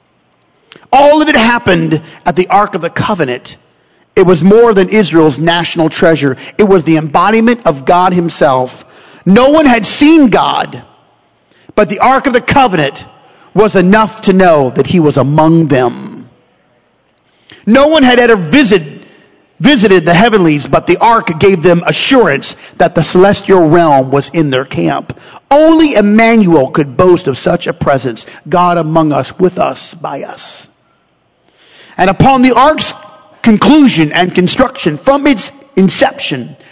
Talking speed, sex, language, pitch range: 150 wpm, male, English, 160-215 Hz